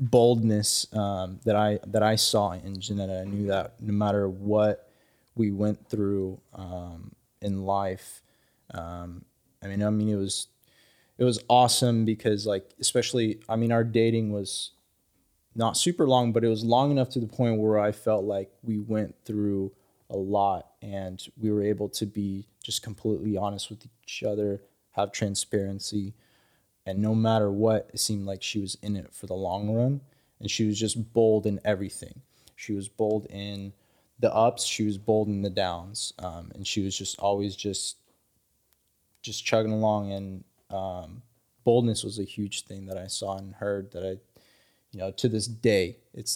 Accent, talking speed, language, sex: American, 175 wpm, English, male